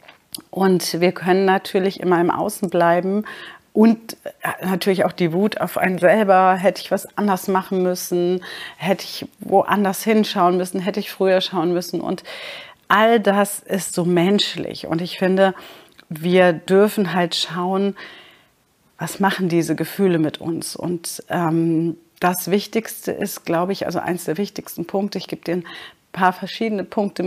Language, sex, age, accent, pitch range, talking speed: German, female, 40-59, German, 175-195 Hz, 155 wpm